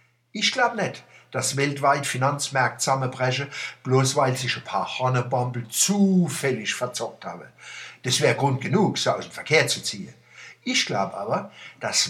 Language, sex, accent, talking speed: German, male, German, 150 wpm